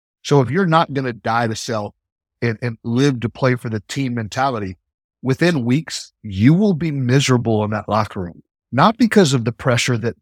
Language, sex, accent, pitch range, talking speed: English, male, American, 115-145 Hz, 200 wpm